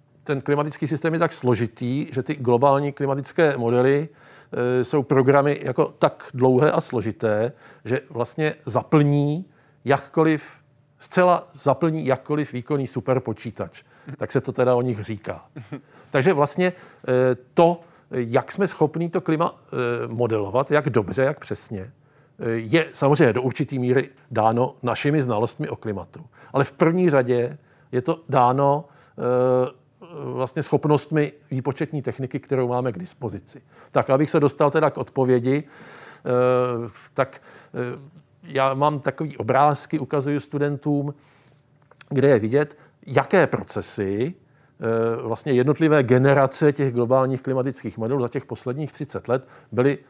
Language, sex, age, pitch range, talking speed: Czech, male, 50-69, 125-150 Hz, 130 wpm